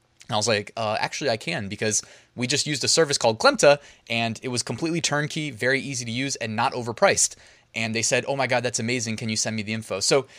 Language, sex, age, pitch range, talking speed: English, male, 20-39, 125-150 Hz, 250 wpm